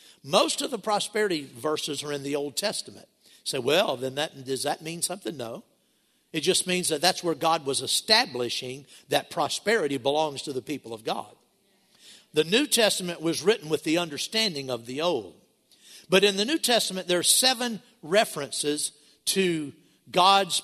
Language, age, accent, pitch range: English, 50-69, American, 145-200 Hz